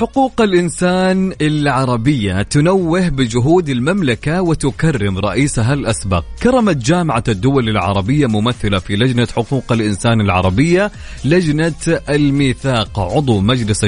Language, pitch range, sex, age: Arabic, 115-170 Hz, male, 30-49